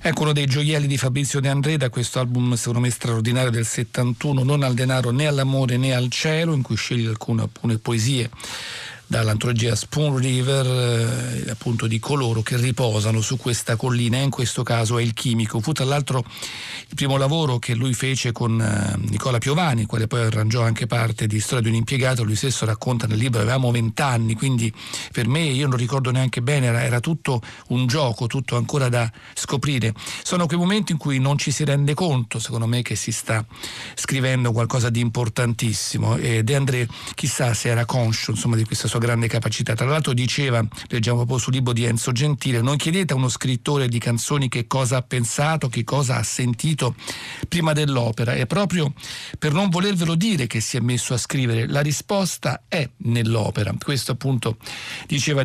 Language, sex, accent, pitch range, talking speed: Italian, male, native, 115-140 Hz, 185 wpm